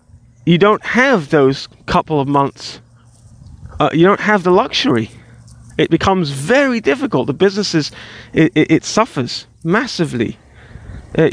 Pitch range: 140-200 Hz